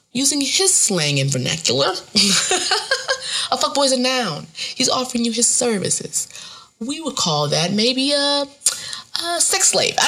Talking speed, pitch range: 150 wpm, 175-285 Hz